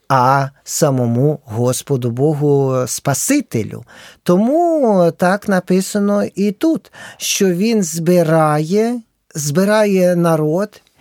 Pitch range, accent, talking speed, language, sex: 135-180 Hz, native, 80 wpm, Ukrainian, male